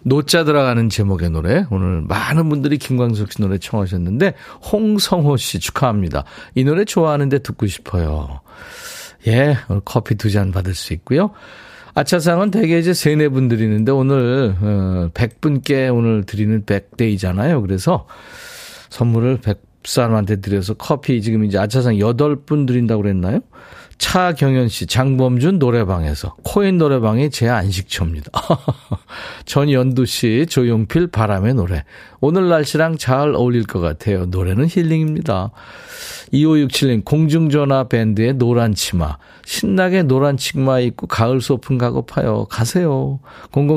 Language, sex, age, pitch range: Korean, male, 40-59, 105-145 Hz